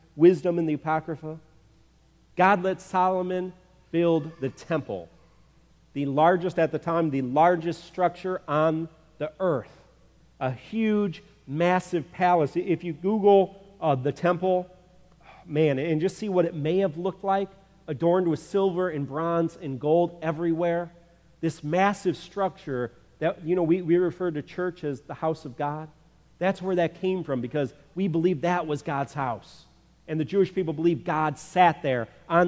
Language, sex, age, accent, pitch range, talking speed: English, male, 40-59, American, 145-185 Hz, 160 wpm